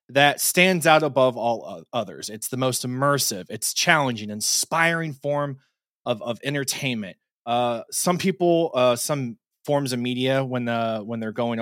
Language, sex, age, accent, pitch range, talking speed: English, male, 20-39, American, 120-150 Hz, 160 wpm